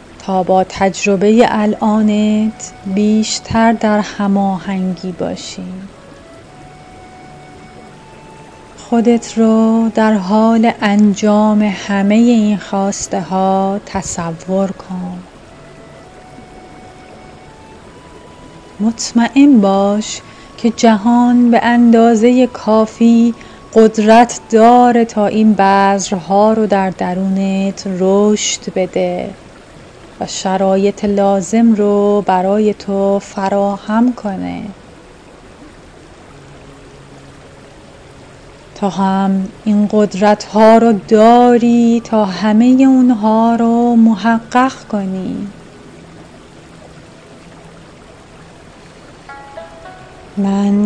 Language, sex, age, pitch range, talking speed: Persian, female, 30-49, 195-225 Hz, 65 wpm